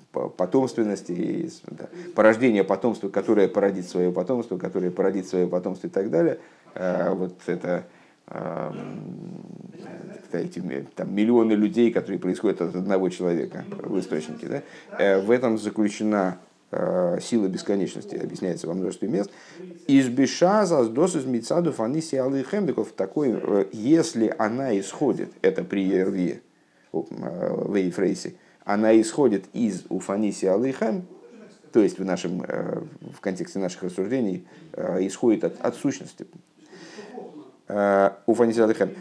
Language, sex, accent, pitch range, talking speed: Russian, male, native, 100-140 Hz, 95 wpm